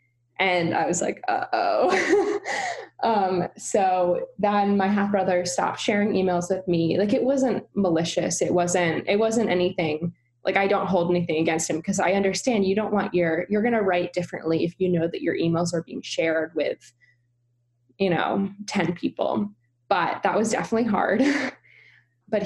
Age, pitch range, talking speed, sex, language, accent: 10-29, 175-200 Hz, 170 wpm, female, English, American